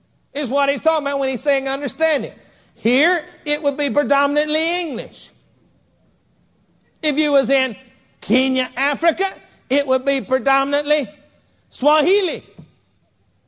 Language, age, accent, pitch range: English, 50-69, American, 220-285 Hz